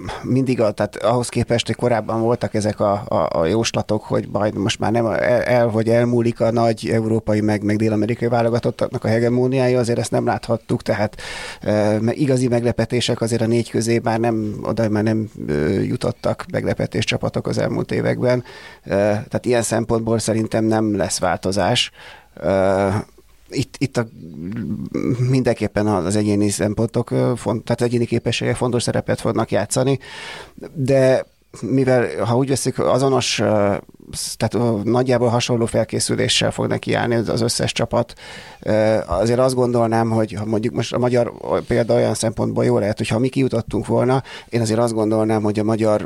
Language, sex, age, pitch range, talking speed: Hungarian, male, 30-49, 105-120 Hz, 145 wpm